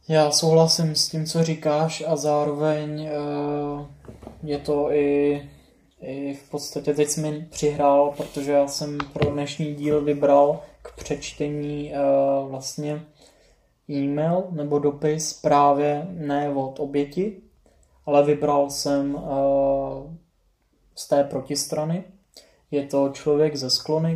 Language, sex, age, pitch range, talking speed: Czech, male, 20-39, 140-150 Hz, 115 wpm